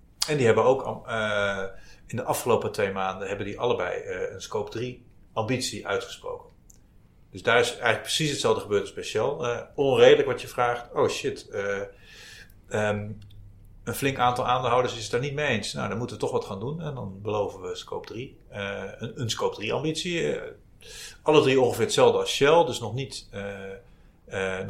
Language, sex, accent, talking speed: Dutch, male, Dutch, 190 wpm